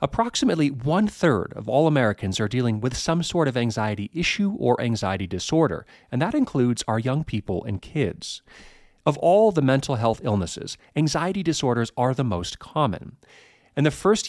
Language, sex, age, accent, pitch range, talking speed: English, male, 40-59, American, 105-160 Hz, 165 wpm